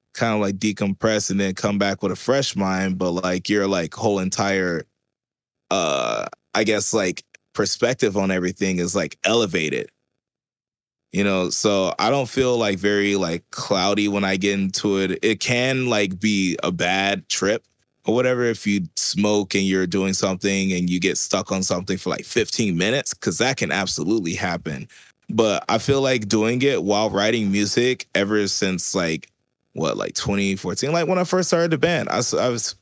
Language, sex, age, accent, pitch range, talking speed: English, male, 20-39, American, 95-110 Hz, 185 wpm